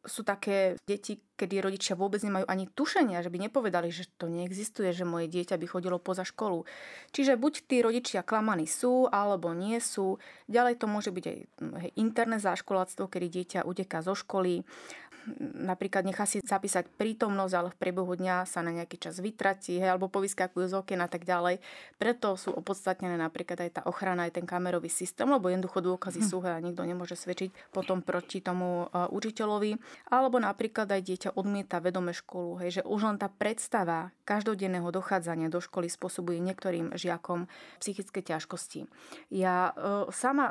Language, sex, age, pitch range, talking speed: Slovak, female, 30-49, 180-225 Hz, 170 wpm